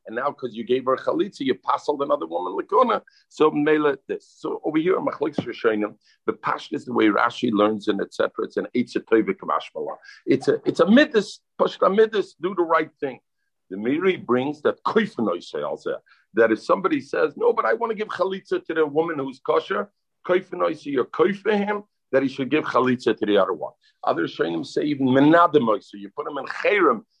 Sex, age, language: male, 50-69, English